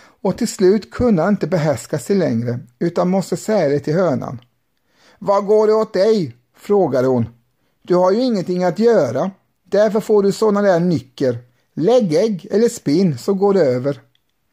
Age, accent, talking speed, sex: 50-69, native, 175 wpm, male